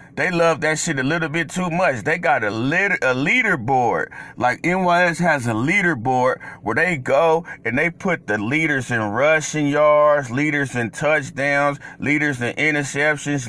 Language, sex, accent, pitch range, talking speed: English, male, American, 145-180 Hz, 165 wpm